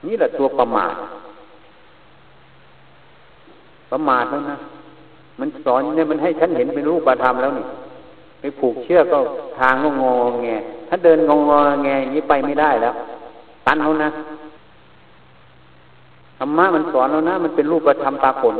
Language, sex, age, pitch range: Thai, male, 60-79, 130-165 Hz